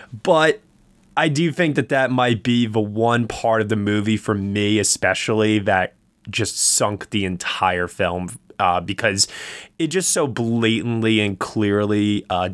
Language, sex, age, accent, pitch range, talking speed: English, male, 20-39, American, 105-125 Hz, 155 wpm